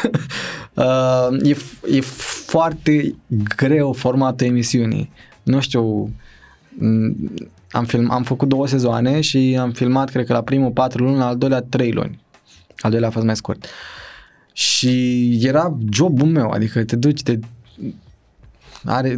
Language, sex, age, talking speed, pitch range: Romanian, male, 20-39, 135 wpm, 115-135 Hz